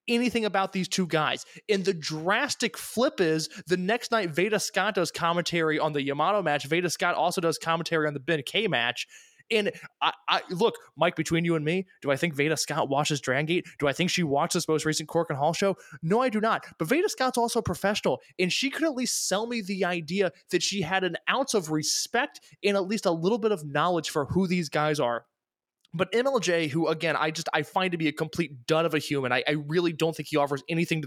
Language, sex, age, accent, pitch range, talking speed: English, male, 20-39, American, 150-190 Hz, 235 wpm